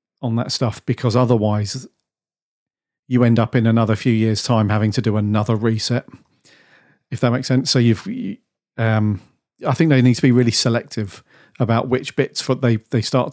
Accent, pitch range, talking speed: British, 110-130 Hz, 180 wpm